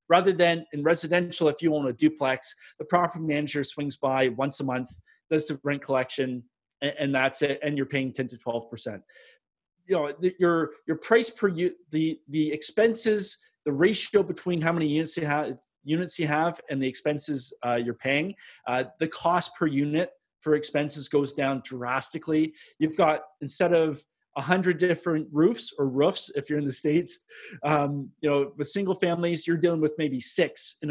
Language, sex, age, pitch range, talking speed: English, male, 30-49, 135-170 Hz, 190 wpm